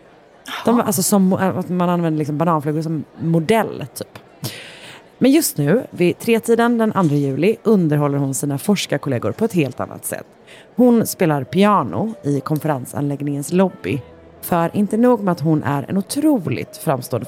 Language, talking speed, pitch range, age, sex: Swedish, 155 wpm, 145-195 Hz, 30-49, female